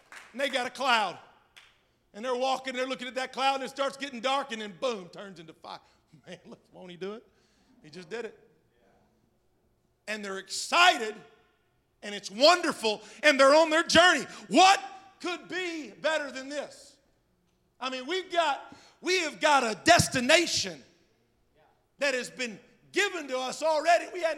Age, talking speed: 50-69, 170 wpm